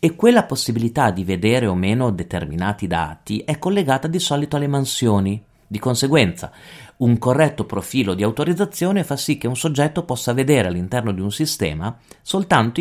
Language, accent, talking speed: Italian, native, 160 wpm